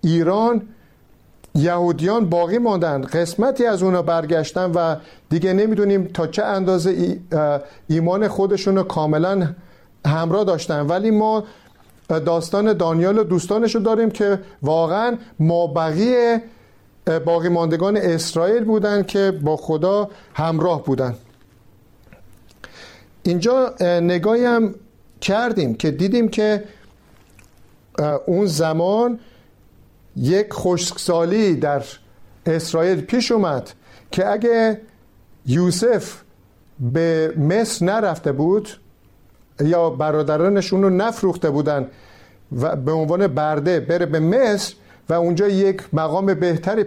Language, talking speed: Persian, 100 wpm